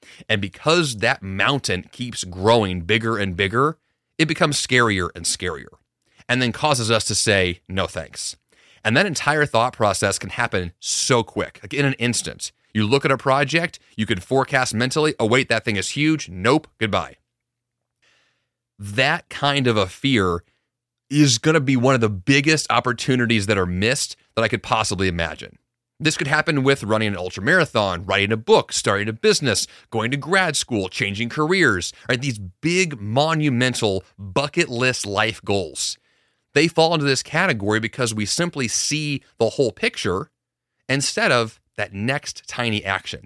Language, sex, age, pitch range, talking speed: English, male, 30-49, 105-145 Hz, 165 wpm